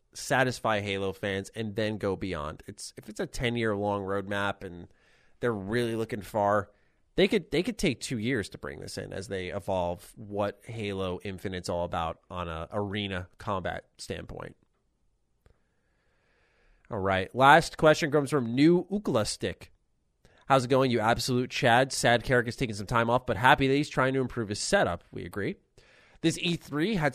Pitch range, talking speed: 100-135 Hz, 175 wpm